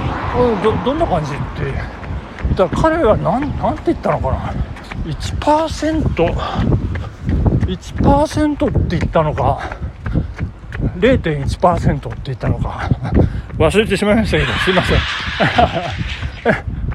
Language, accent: Japanese, native